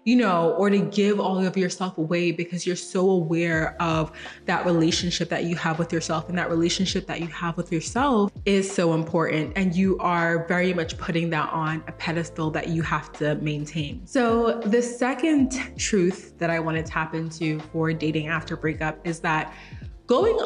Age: 20-39